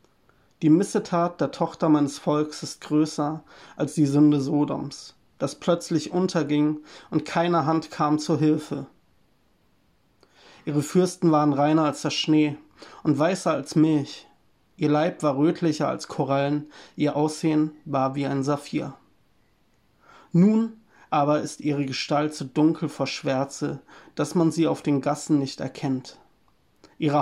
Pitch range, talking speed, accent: 145-160 Hz, 135 wpm, German